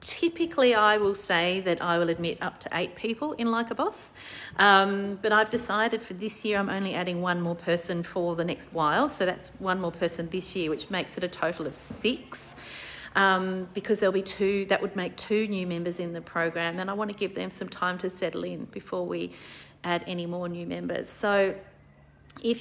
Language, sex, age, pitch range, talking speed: English, female, 40-59, 170-210 Hz, 210 wpm